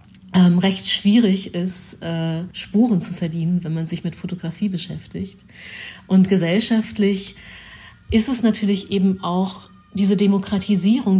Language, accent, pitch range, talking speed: German, German, 175-200 Hz, 125 wpm